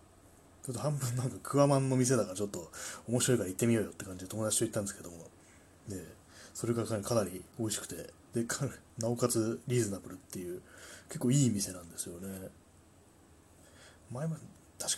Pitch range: 90-120 Hz